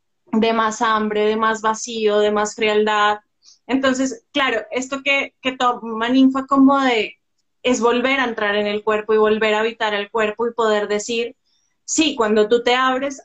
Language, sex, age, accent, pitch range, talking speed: Spanish, female, 20-39, Colombian, 210-240 Hz, 175 wpm